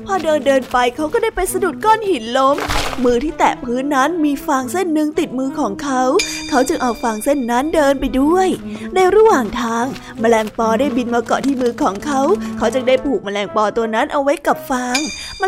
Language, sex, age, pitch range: Thai, female, 20-39, 235-300 Hz